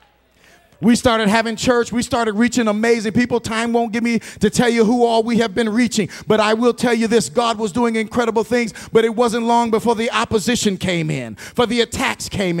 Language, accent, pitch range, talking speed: English, American, 180-245 Hz, 220 wpm